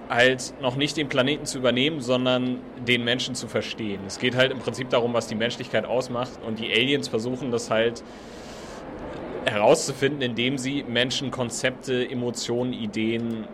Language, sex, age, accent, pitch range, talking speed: German, male, 30-49, German, 115-130 Hz, 155 wpm